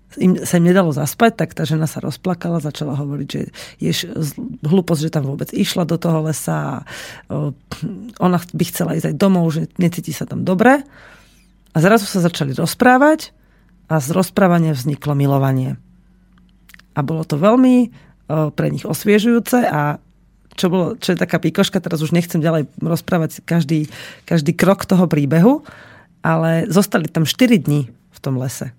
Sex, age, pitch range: female, 40-59, 155-190 Hz